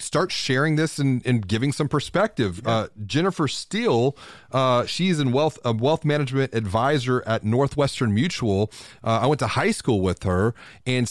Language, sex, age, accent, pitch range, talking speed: English, male, 30-49, American, 105-135 Hz, 155 wpm